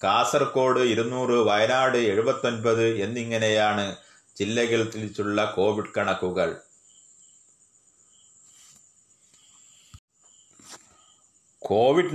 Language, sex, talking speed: Malayalam, male, 55 wpm